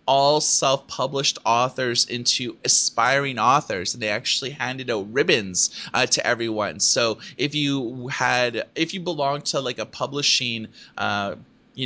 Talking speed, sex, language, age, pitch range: 140 wpm, male, English, 30-49, 115-145 Hz